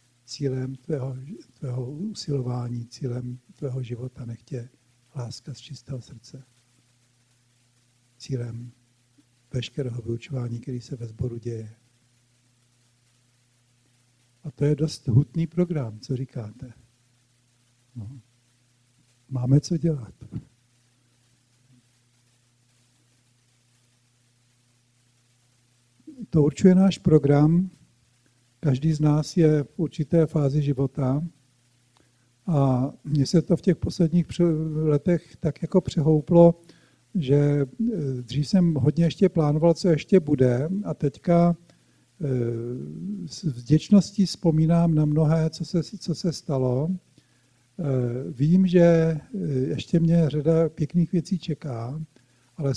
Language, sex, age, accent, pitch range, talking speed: Czech, male, 60-79, native, 120-160 Hz, 95 wpm